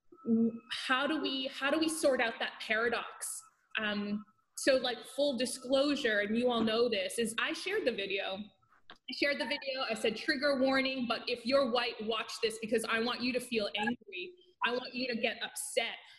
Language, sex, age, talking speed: English, female, 20-39, 195 wpm